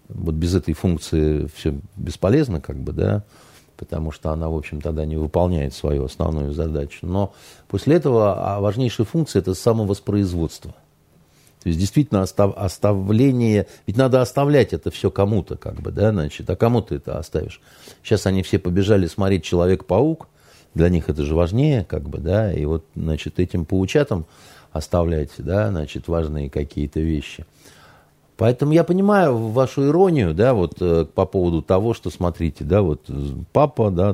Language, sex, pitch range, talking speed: Russian, male, 80-115 Hz, 155 wpm